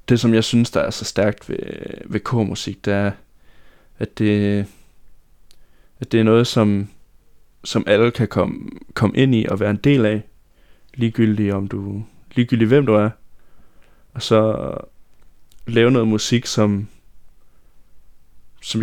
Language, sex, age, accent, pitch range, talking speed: Danish, male, 20-39, native, 105-120 Hz, 145 wpm